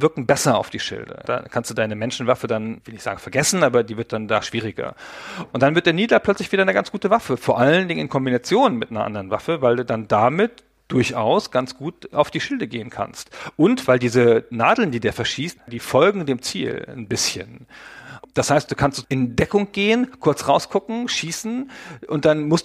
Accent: German